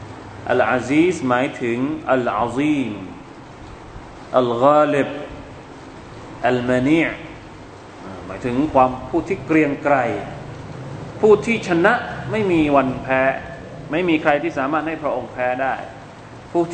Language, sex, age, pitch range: Thai, male, 20-39, 120-170 Hz